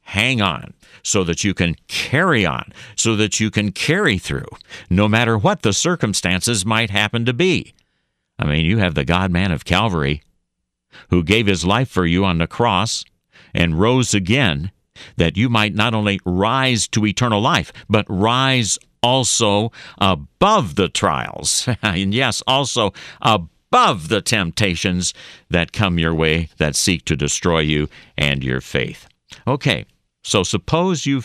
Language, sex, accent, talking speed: English, male, American, 155 wpm